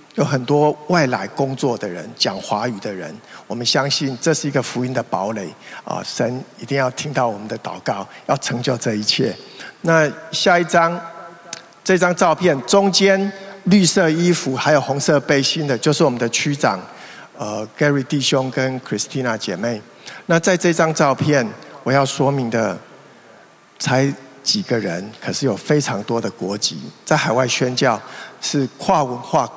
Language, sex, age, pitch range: Chinese, male, 50-69, 125-165 Hz